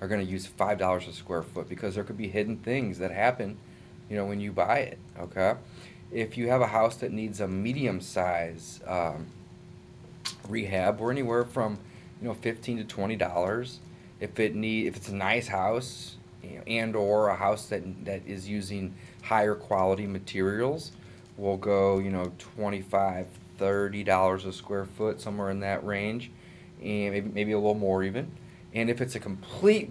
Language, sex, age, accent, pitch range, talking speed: English, male, 30-49, American, 95-120 Hz, 185 wpm